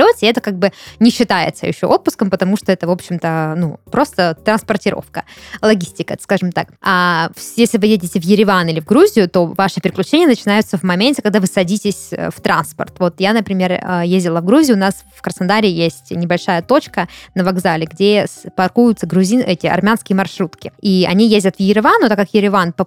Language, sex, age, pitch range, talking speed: Russian, female, 20-39, 185-215 Hz, 185 wpm